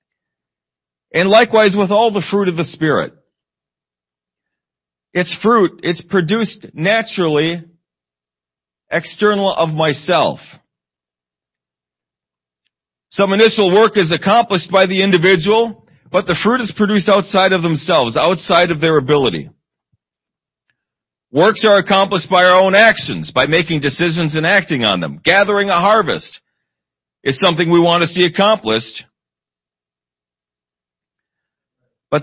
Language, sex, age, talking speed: English, male, 40-59, 115 wpm